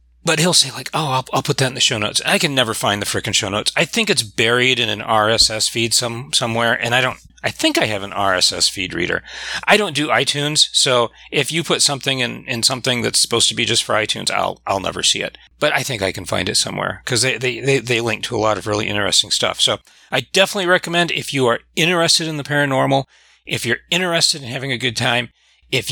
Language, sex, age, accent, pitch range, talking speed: English, male, 40-59, American, 115-150 Hz, 250 wpm